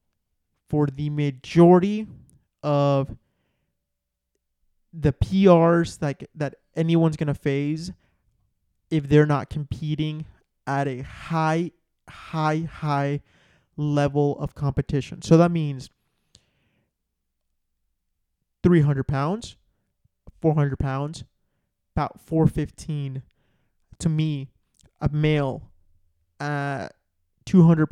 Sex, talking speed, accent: male, 85 wpm, American